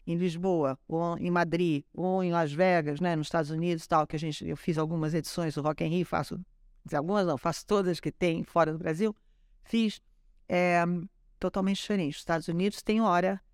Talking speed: 200 wpm